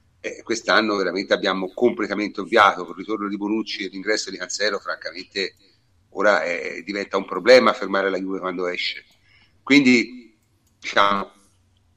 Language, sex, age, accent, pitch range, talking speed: Italian, male, 40-59, native, 100-125 Hz, 135 wpm